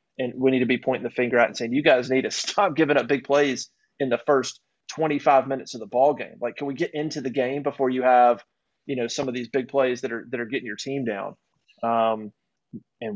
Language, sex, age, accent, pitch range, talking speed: English, male, 30-49, American, 125-150 Hz, 255 wpm